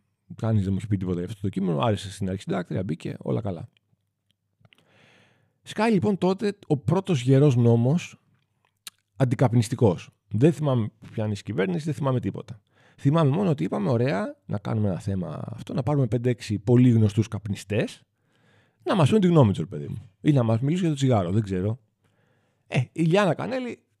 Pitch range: 100-145 Hz